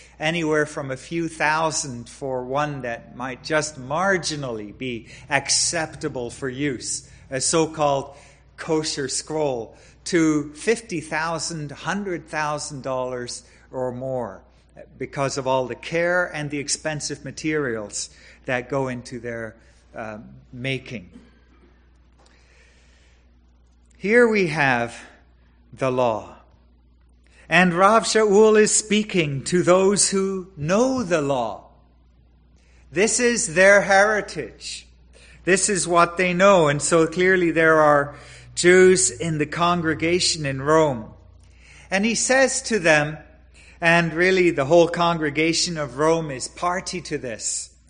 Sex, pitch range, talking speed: male, 120-175 Hz, 115 wpm